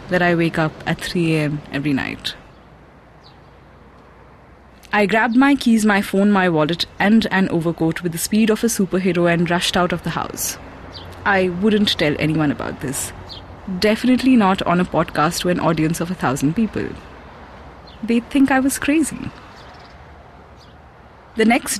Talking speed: 155 wpm